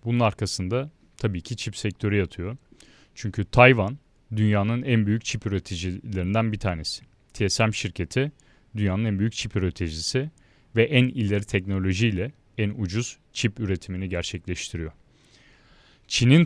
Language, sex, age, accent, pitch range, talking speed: Turkish, male, 40-59, native, 100-125 Hz, 120 wpm